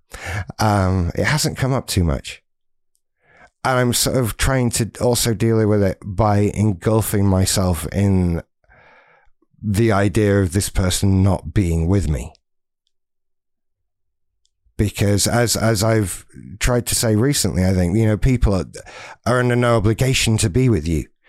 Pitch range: 90-115 Hz